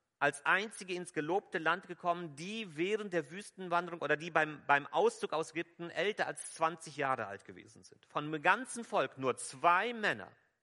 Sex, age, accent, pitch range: male, 40-59, German, 125-180 Hz